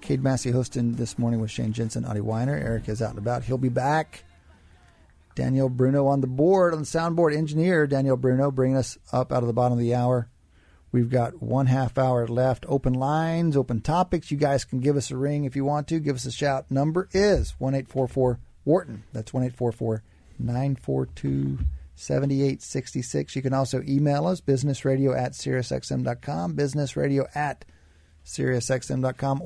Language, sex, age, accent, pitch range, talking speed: English, male, 40-59, American, 110-135 Hz, 165 wpm